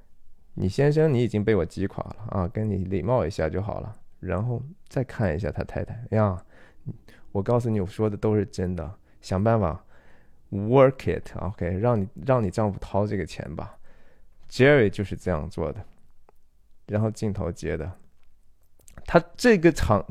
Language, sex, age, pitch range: Chinese, male, 20-39, 95-120 Hz